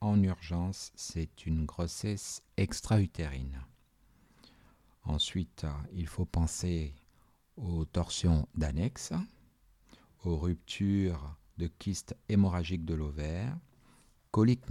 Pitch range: 80-105 Hz